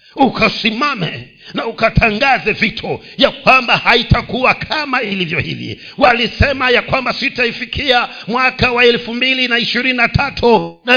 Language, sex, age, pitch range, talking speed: Swahili, male, 50-69, 200-270 Hz, 105 wpm